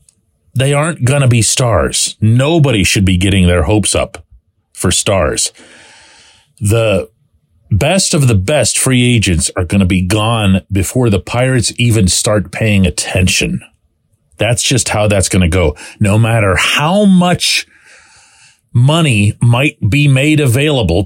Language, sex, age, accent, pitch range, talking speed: English, male, 40-59, American, 100-135 Hz, 140 wpm